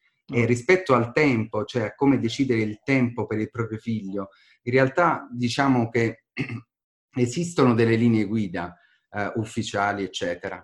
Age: 30-49